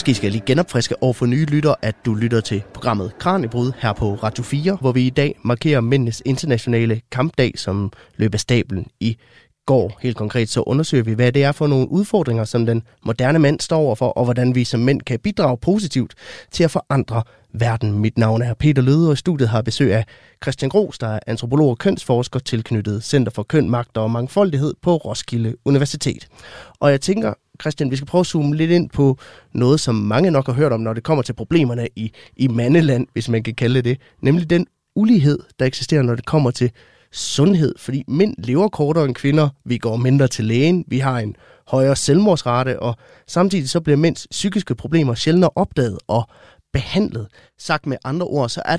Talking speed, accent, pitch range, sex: 205 wpm, native, 115-150 Hz, male